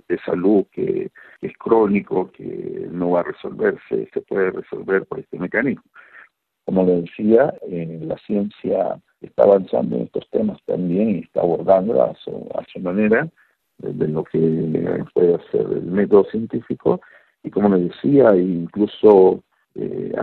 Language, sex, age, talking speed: Spanish, male, 50-69, 155 wpm